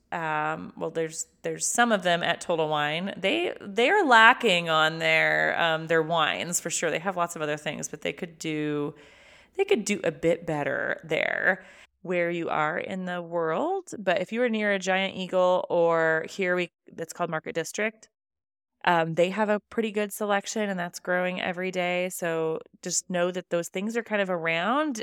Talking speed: 195 wpm